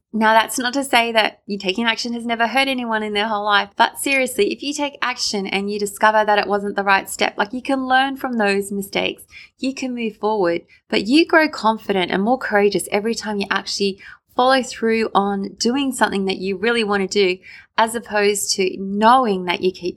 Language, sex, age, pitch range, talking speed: English, female, 20-39, 200-255 Hz, 215 wpm